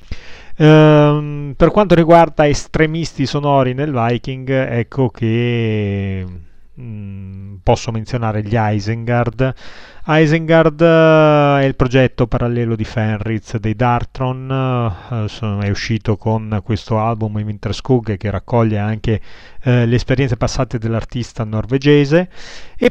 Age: 30-49